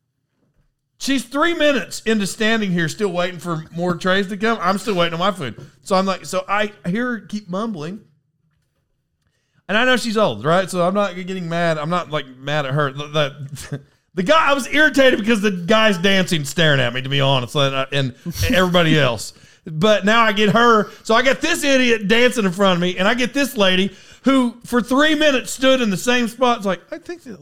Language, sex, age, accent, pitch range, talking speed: English, male, 40-59, American, 140-215 Hz, 220 wpm